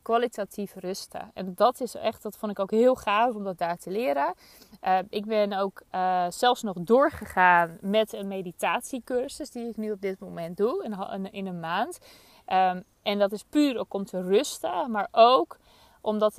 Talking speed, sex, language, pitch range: 185 wpm, female, Dutch, 190-240 Hz